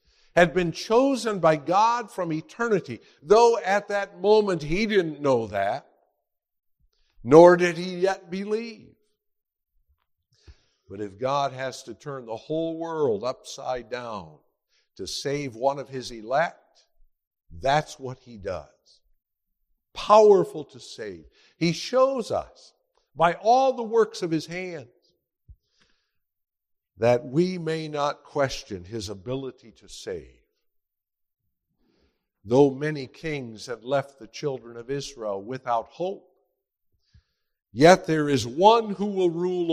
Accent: American